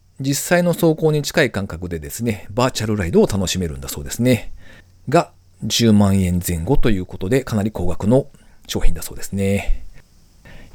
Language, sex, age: Japanese, male, 40-59